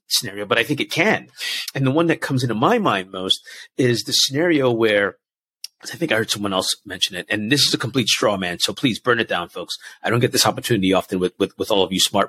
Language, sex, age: English, male, 30-49